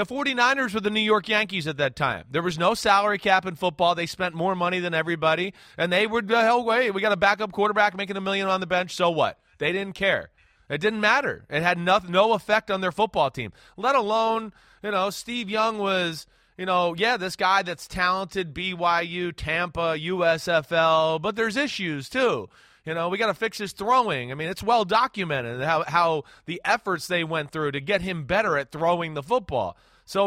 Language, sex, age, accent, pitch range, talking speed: English, male, 30-49, American, 165-215 Hz, 210 wpm